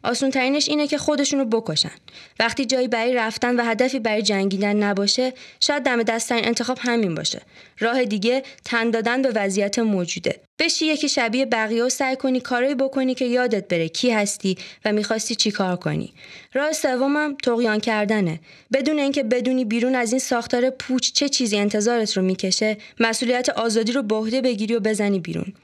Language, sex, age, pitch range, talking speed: Persian, female, 20-39, 210-260 Hz, 165 wpm